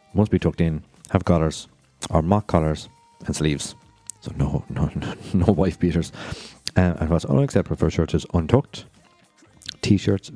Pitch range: 85-115 Hz